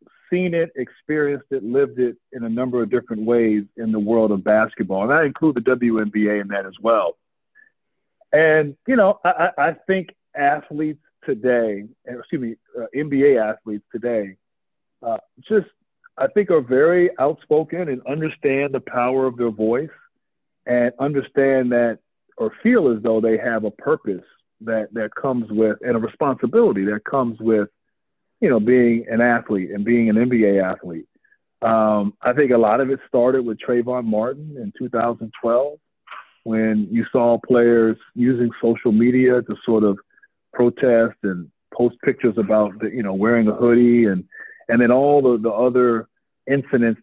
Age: 50-69